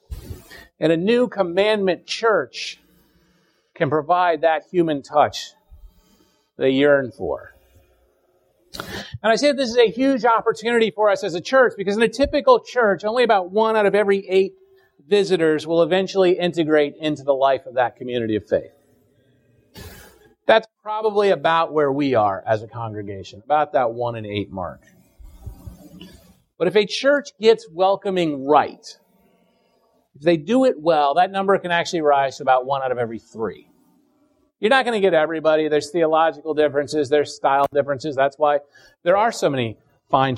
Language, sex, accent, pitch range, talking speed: English, male, American, 145-215 Hz, 160 wpm